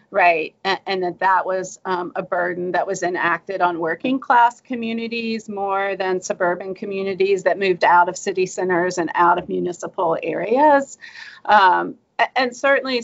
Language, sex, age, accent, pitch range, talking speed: English, female, 40-59, American, 170-195 Hz, 155 wpm